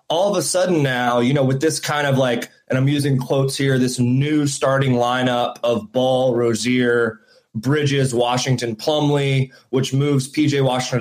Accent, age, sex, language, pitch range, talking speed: American, 20-39, male, English, 125-150 Hz, 170 wpm